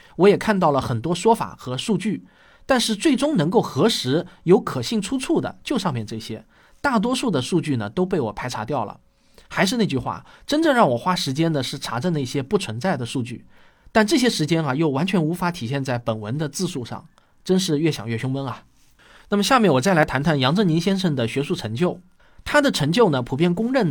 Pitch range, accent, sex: 130-205 Hz, native, male